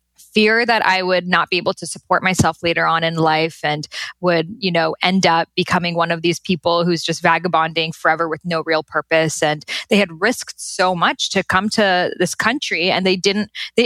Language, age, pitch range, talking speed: English, 10-29, 165-205 Hz, 205 wpm